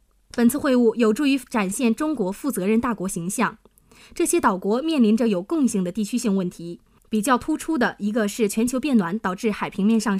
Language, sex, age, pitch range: Chinese, female, 20-39, 195-255 Hz